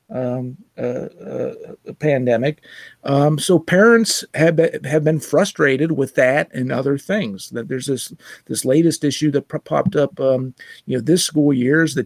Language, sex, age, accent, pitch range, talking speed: English, male, 50-69, American, 135-170 Hz, 180 wpm